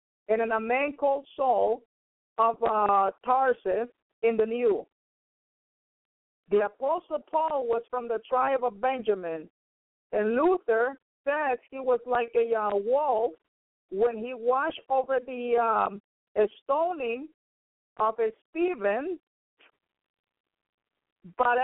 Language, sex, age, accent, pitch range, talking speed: English, female, 50-69, American, 230-295 Hz, 110 wpm